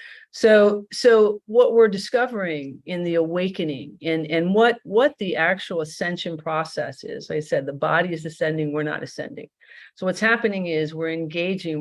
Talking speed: 165 wpm